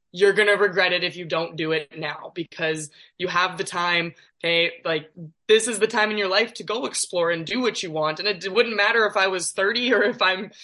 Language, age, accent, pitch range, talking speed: English, 20-39, American, 165-205 Hz, 255 wpm